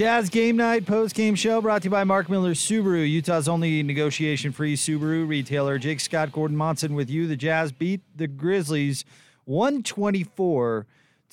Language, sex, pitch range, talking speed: English, male, 115-150 Hz, 155 wpm